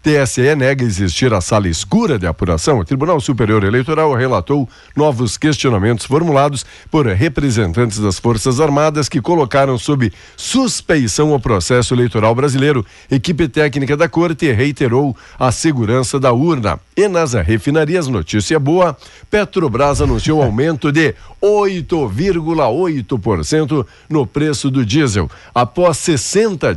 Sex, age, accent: male, 60-79, Brazilian